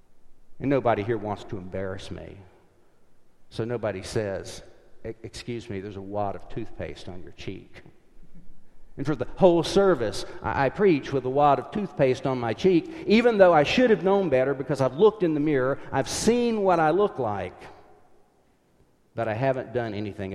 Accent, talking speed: American, 175 wpm